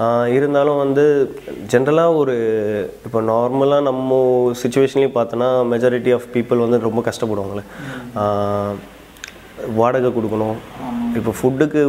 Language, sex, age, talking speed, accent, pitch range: Tamil, male, 20-39, 95 wpm, native, 110-135 Hz